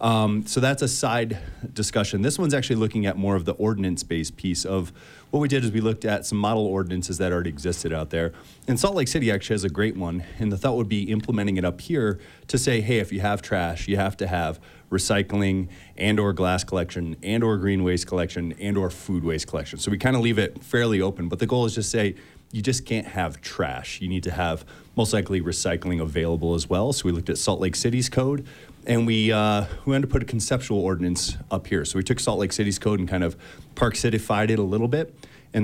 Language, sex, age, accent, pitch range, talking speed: English, male, 30-49, American, 90-115 Hz, 240 wpm